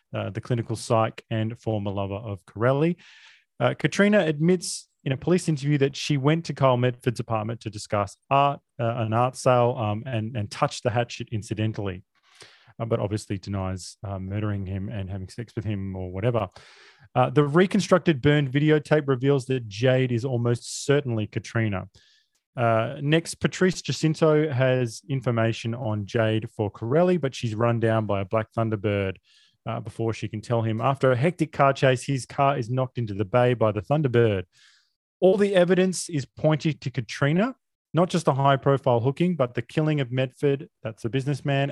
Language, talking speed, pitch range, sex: English, 175 wpm, 110-150 Hz, male